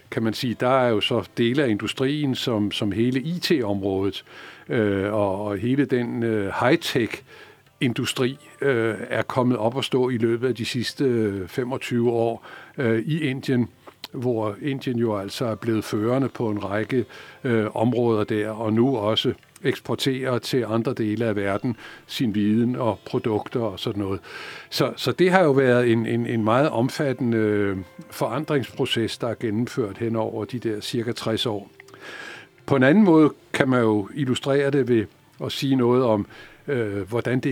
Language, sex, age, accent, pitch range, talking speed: Danish, male, 60-79, native, 110-130 Hz, 150 wpm